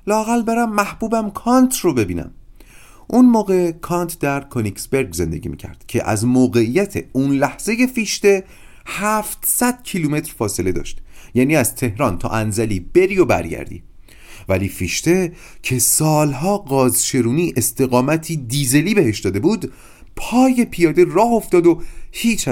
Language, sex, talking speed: Persian, male, 125 wpm